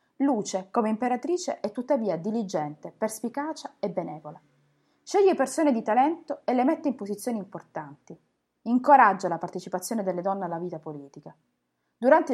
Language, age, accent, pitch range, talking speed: Italian, 30-49, native, 180-260 Hz, 135 wpm